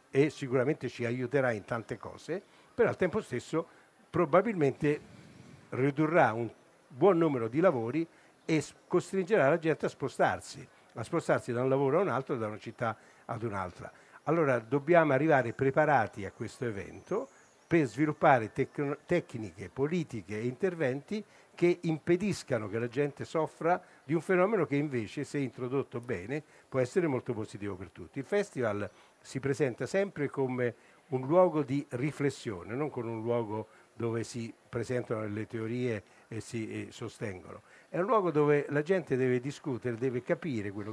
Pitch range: 115-155 Hz